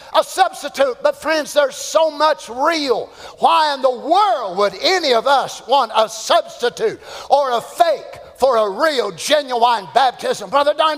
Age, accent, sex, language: 50-69, American, male, English